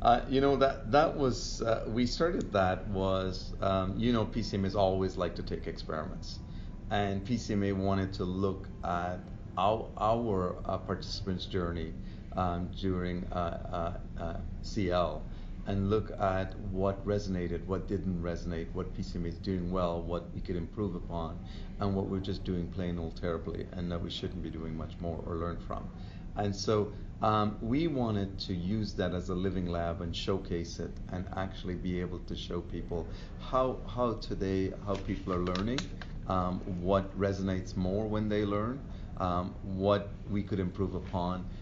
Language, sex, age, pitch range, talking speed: English, male, 40-59, 90-100 Hz, 165 wpm